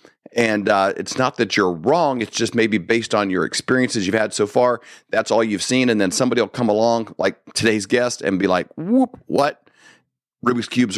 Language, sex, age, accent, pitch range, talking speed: English, male, 40-59, American, 115-140 Hz, 210 wpm